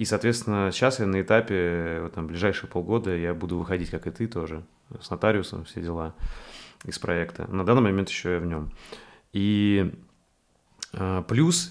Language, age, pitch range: Russian, 20-39, 90-110 Hz